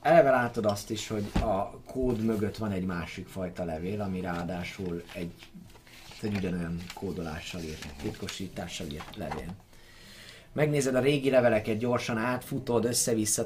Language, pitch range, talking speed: Hungarian, 90-115 Hz, 135 wpm